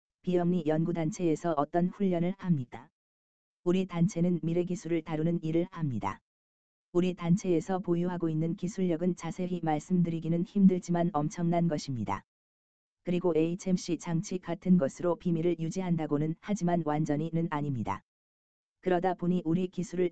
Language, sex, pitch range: Korean, female, 155-180 Hz